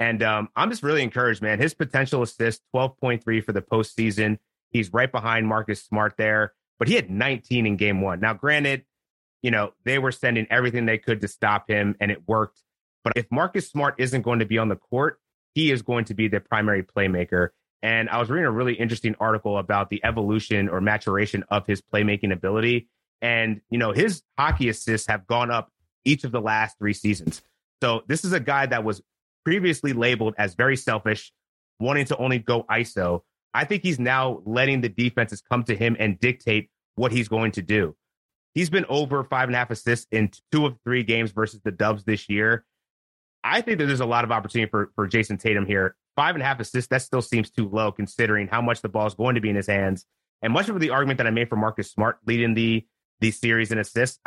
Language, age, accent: English, 30-49, American